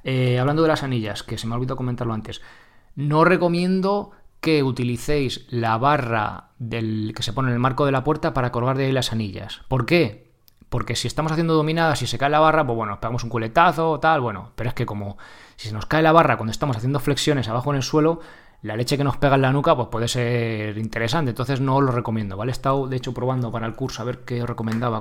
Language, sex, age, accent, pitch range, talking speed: Spanish, male, 20-39, Spanish, 115-145 Hz, 240 wpm